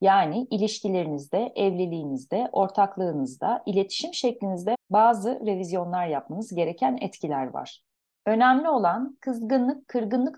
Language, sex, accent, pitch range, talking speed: Turkish, female, native, 185-255 Hz, 95 wpm